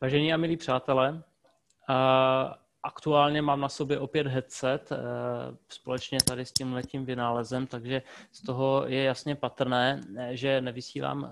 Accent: native